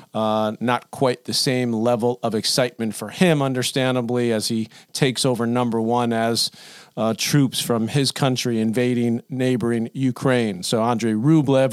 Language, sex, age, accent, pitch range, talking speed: English, male, 40-59, American, 115-135 Hz, 150 wpm